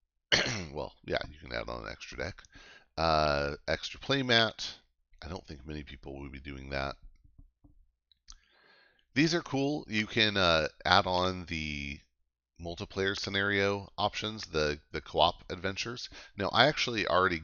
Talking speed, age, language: 140 wpm, 40-59, English